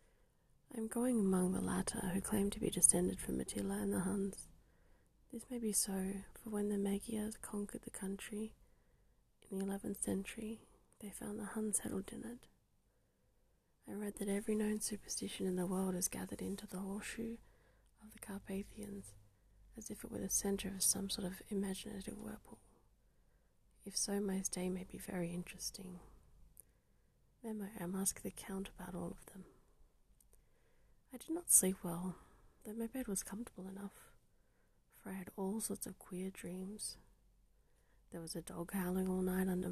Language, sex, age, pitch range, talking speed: English, female, 20-39, 175-215 Hz, 170 wpm